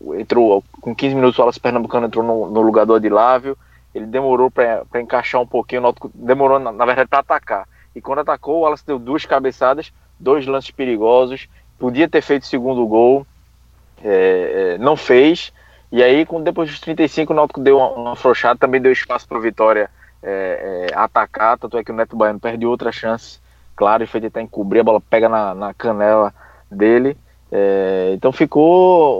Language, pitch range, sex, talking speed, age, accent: Portuguese, 115-145 Hz, male, 185 wpm, 20-39, Brazilian